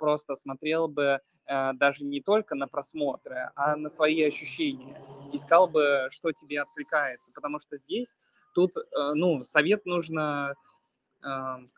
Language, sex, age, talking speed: Russian, male, 20-39, 140 wpm